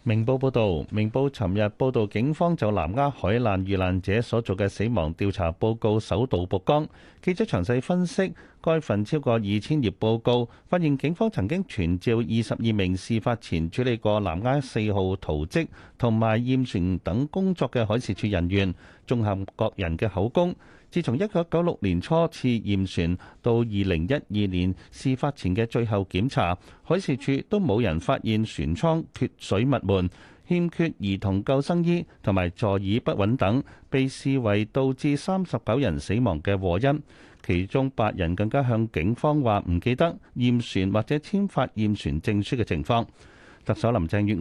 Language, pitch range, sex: Chinese, 100-135 Hz, male